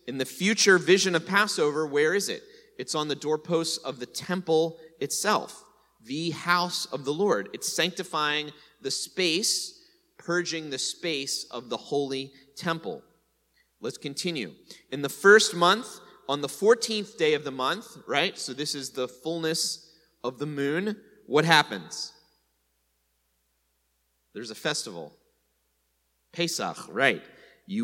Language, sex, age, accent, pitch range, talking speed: English, male, 30-49, American, 140-180 Hz, 135 wpm